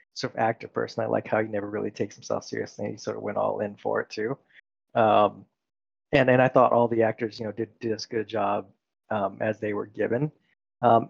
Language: English